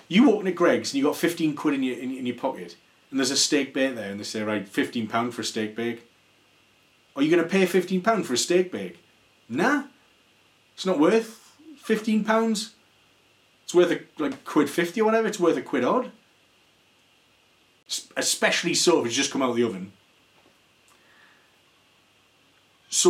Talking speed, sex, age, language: 185 wpm, male, 30-49, English